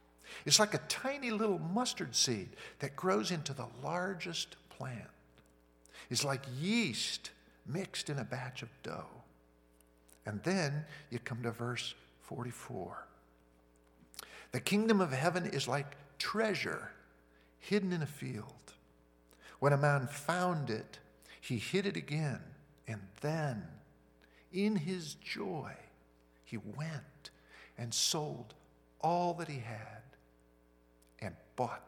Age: 50-69